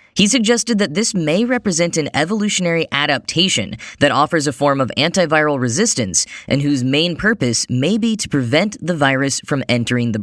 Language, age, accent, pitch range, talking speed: English, 10-29, American, 125-160 Hz, 170 wpm